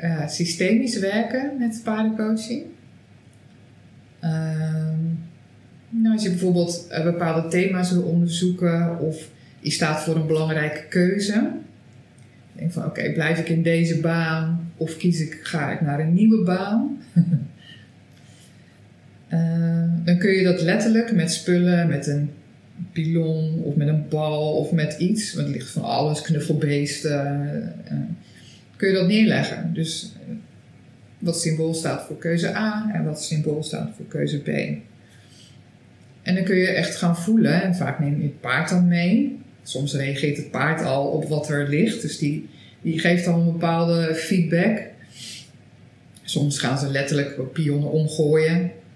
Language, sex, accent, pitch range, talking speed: Dutch, female, Dutch, 145-175 Hz, 150 wpm